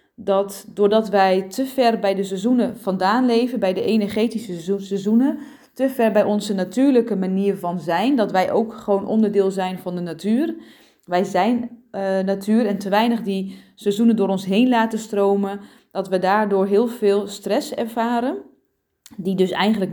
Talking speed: 165 wpm